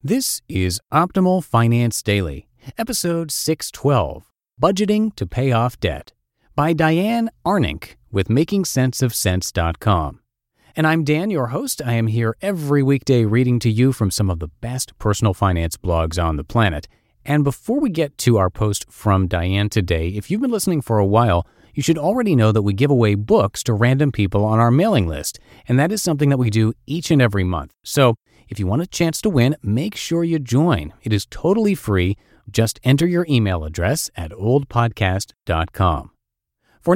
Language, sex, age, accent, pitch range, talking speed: English, male, 40-59, American, 95-145 Hz, 175 wpm